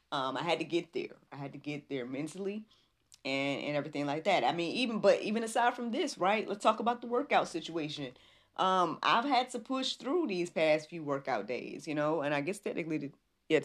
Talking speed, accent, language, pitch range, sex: 225 wpm, American, English, 145-190 Hz, female